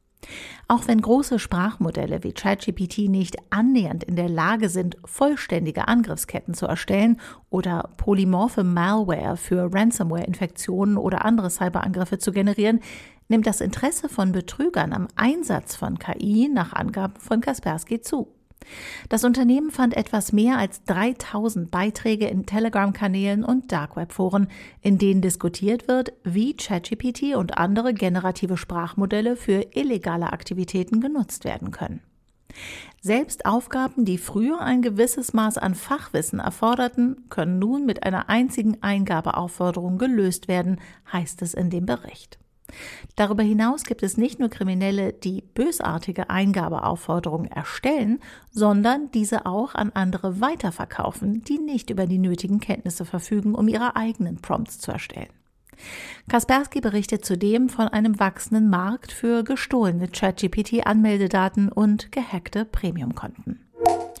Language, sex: German, female